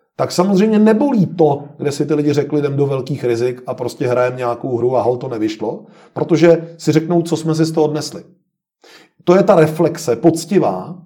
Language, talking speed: Czech, 195 wpm